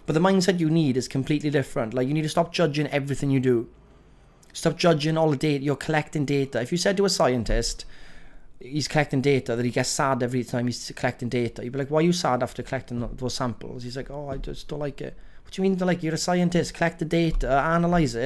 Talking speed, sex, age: 245 wpm, male, 30-49